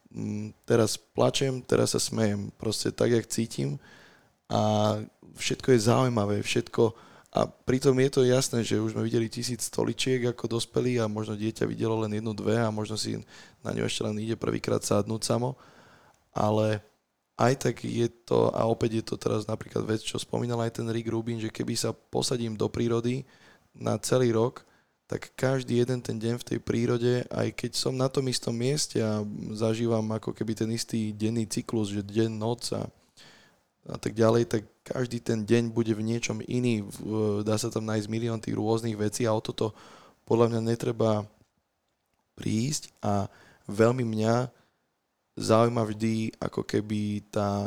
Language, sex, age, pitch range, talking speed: Slovak, male, 20-39, 110-120 Hz, 165 wpm